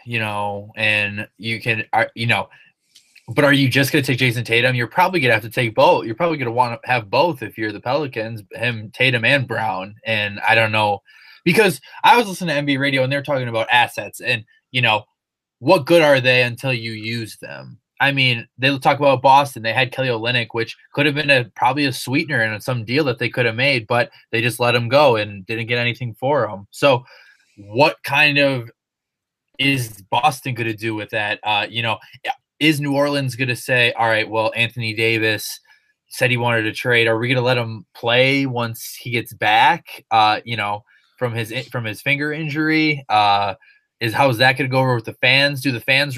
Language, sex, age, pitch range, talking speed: English, male, 20-39, 115-140 Hz, 215 wpm